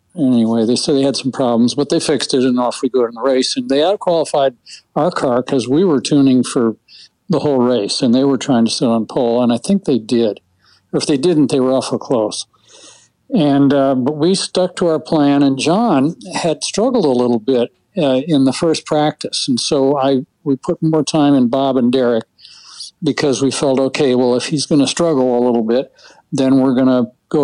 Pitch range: 125-155 Hz